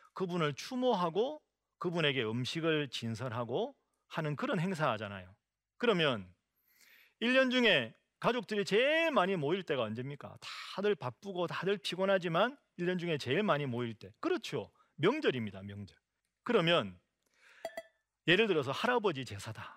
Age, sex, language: 40-59, male, Korean